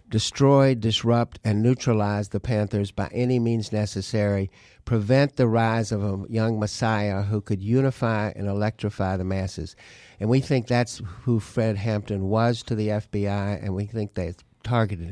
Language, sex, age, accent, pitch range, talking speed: English, male, 60-79, American, 100-115 Hz, 160 wpm